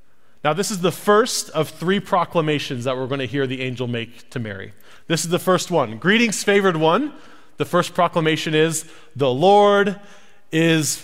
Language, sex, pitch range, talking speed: English, male, 130-175 Hz, 180 wpm